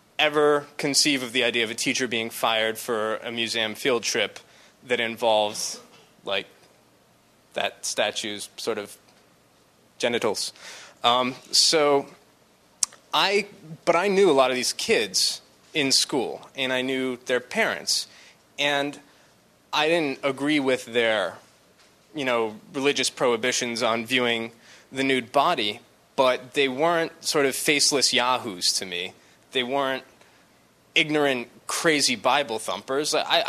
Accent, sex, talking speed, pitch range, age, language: American, male, 130 wpm, 120-150 Hz, 20-39, English